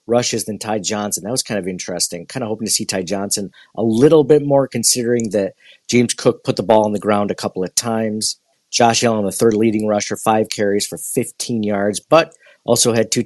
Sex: male